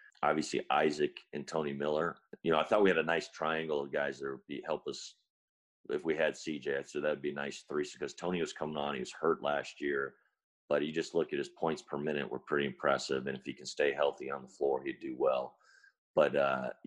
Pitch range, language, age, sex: 70-85 Hz, English, 40-59, male